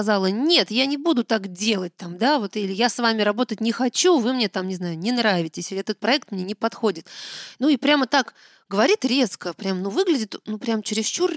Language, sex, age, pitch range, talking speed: Russian, female, 30-49, 195-255 Hz, 200 wpm